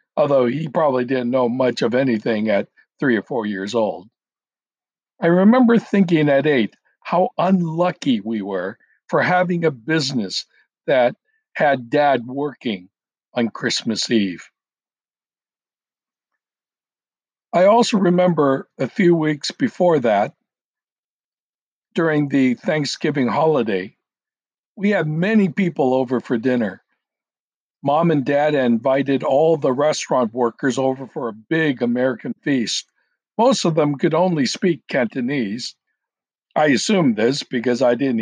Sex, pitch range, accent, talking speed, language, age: male, 120-175 Hz, American, 125 wpm, English, 60-79